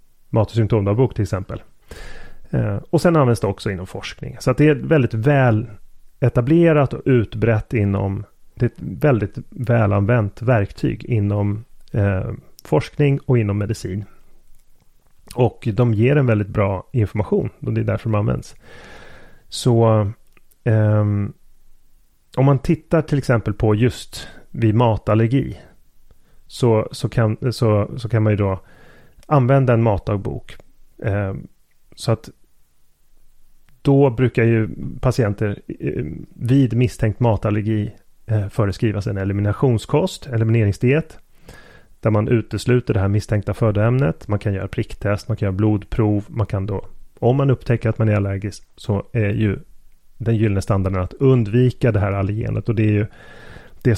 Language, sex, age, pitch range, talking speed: Swedish, male, 30-49, 105-125 Hz, 135 wpm